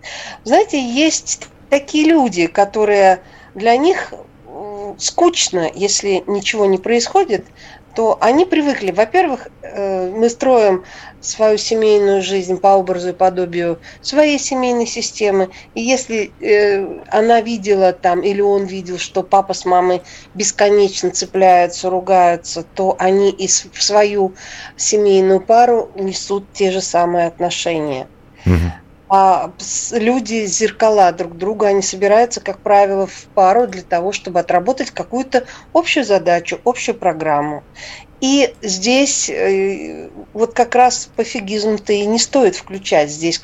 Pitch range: 185-240 Hz